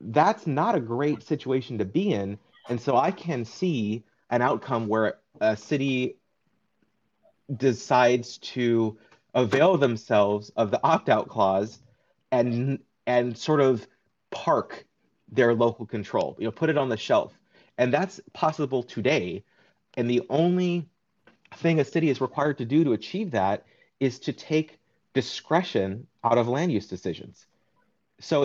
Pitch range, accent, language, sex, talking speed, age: 115-145 Hz, American, English, male, 145 wpm, 30-49